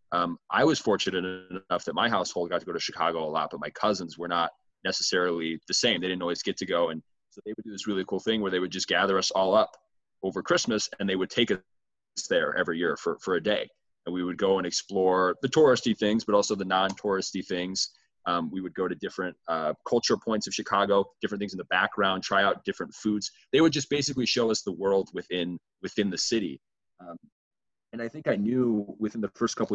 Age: 30-49